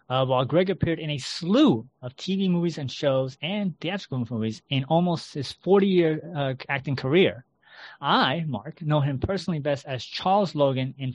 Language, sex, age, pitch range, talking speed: English, male, 30-49, 130-170 Hz, 165 wpm